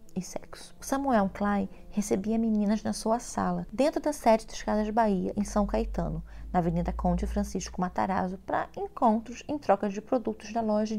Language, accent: Portuguese, Brazilian